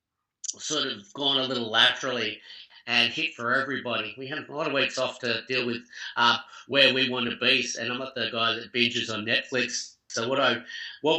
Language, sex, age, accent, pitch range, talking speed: English, male, 50-69, Australian, 115-130 Hz, 210 wpm